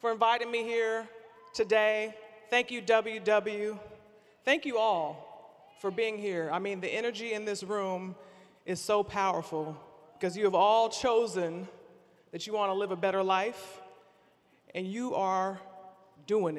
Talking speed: 150 wpm